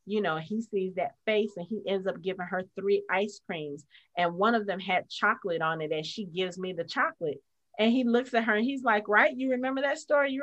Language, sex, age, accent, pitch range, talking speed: English, female, 30-49, American, 215-295 Hz, 245 wpm